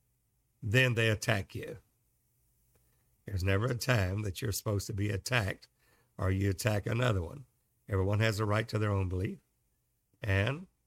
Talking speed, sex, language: 155 wpm, male, English